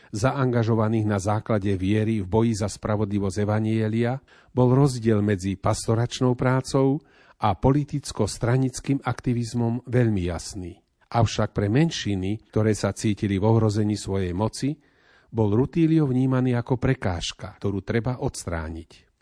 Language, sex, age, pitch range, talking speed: Slovak, male, 40-59, 100-125 Hz, 115 wpm